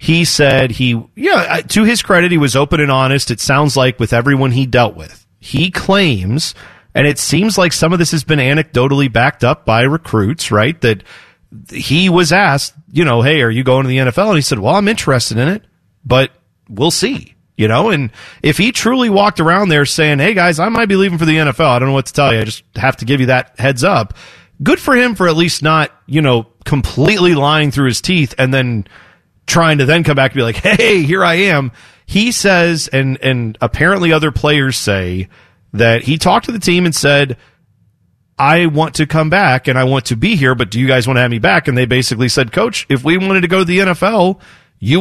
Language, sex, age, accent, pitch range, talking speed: English, male, 40-59, American, 120-170 Hz, 230 wpm